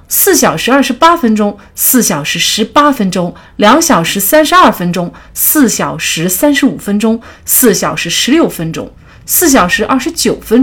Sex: female